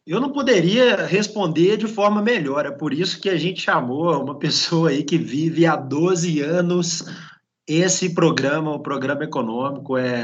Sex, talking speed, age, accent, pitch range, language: male, 165 wpm, 20-39, Brazilian, 160-195 Hz, Portuguese